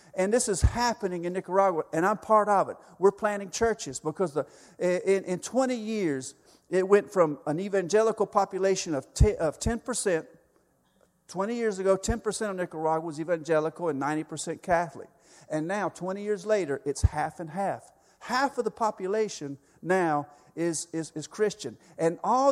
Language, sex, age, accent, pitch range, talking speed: English, male, 50-69, American, 155-205 Hz, 165 wpm